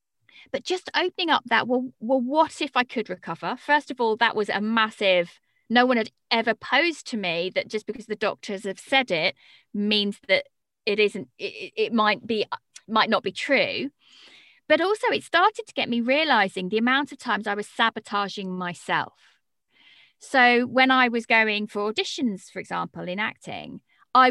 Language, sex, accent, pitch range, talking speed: English, female, British, 215-285 Hz, 185 wpm